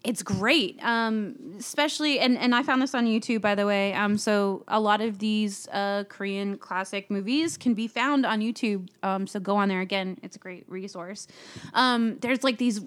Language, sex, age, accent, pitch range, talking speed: English, female, 20-39, American, 190-230 Hz, 200 wpm